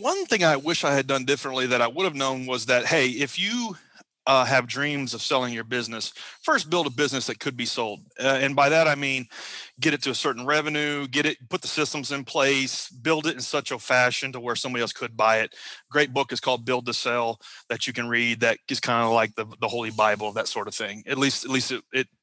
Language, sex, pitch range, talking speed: English, male, 130-160 Hz, 255 wpm